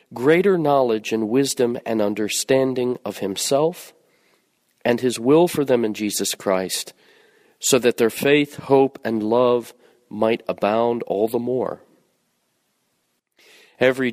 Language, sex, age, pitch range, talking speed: English, male, 40-59, 115-150 Hz, 125 wpm